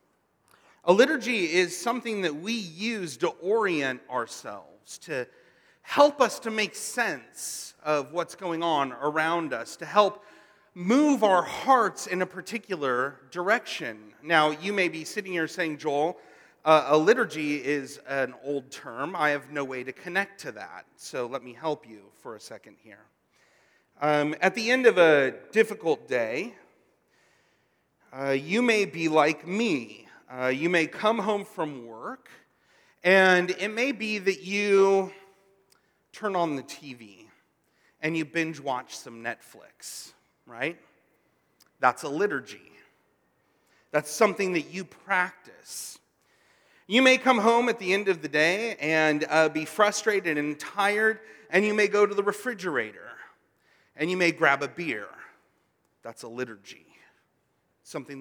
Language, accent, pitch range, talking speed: English, American, 150-210 Hz, 145 wpm